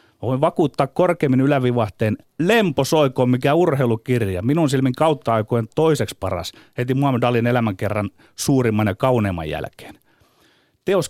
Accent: native